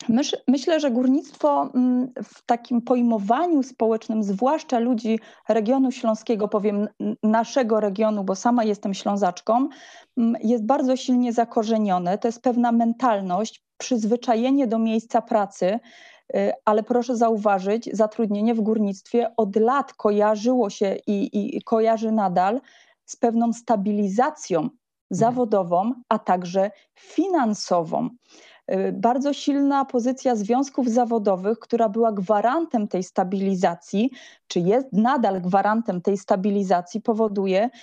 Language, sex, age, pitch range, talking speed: Polish, female, 30-49, 215-250 Hz, 110 wpm